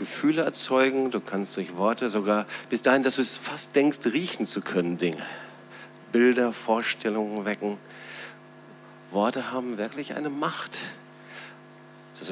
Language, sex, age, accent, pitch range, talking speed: German, male, 50-69, German, 105-135 Hz, 130 wpm